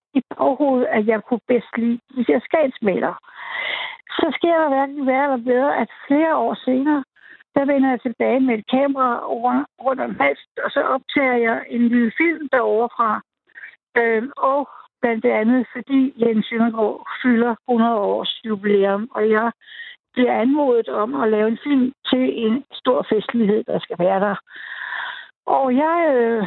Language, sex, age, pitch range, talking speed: Danish, female, 60-79, 230-275 Hz, 160 wpm